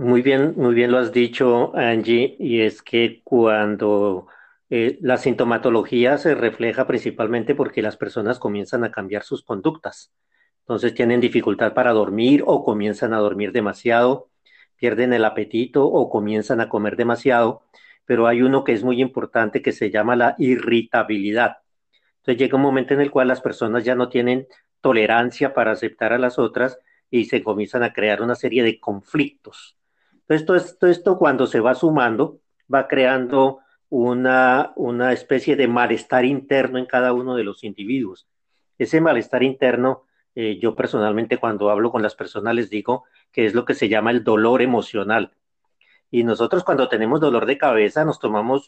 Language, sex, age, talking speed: English, male, 40-59, 170 wpm